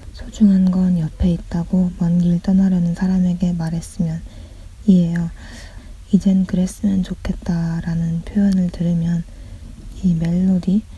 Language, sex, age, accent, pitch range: Korean, female, 20-39, native, 170-190 Hz